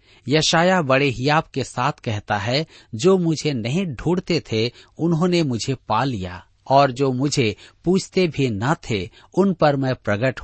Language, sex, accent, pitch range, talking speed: Hindi, male, native, 105-155 Hz, 155 wpm